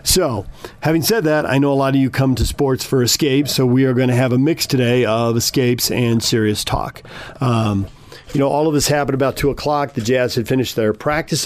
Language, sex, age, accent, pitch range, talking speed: English, male, 50-69, American, 115-145 Hz, 235 wpm